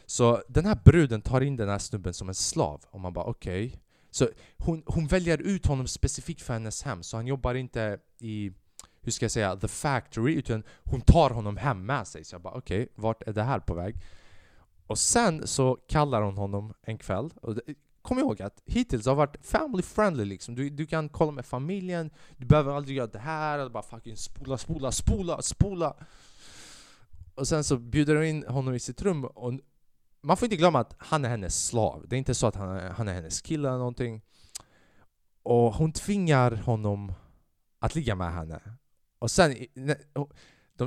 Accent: Norwegian